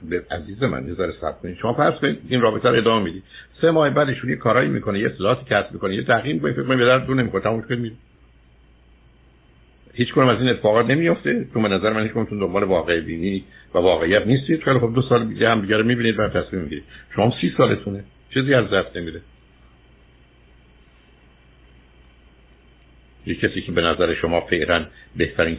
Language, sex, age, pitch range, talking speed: Persian, male, 60-79, 70-115 Hz, 150 wpm